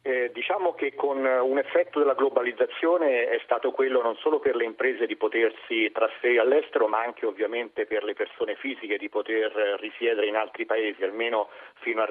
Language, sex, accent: Italian, male, native